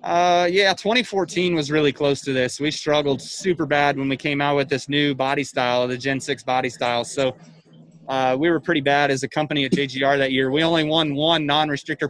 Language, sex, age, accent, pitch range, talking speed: English, male, 20-39, American, 135-165 Hz, 220 wpm